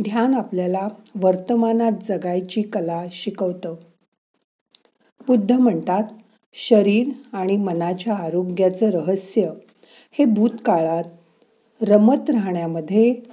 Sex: female